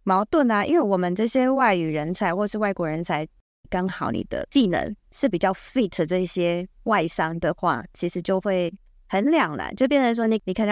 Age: 20-39